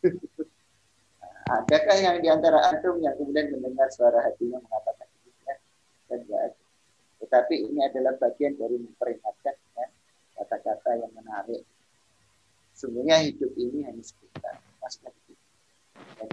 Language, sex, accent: Indonesian, male, native